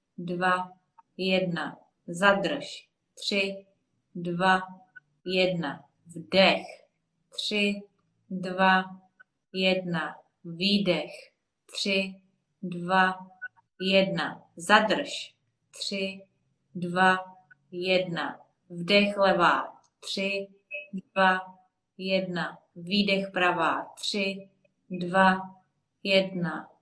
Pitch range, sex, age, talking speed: 180-195 Hz, female, 30-49, 65 wpm